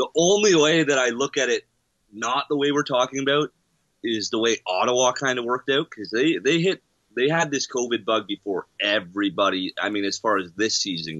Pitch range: 100-125 Hz